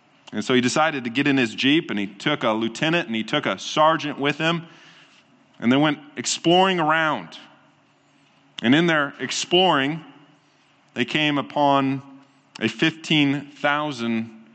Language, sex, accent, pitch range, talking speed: English, male, American, 110-145 Hz, 145 wpm